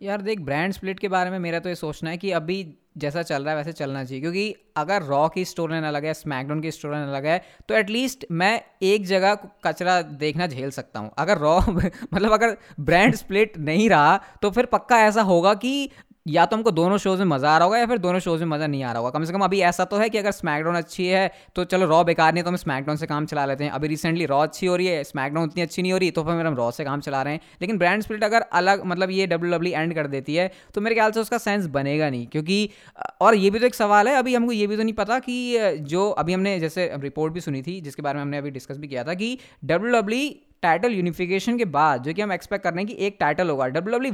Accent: native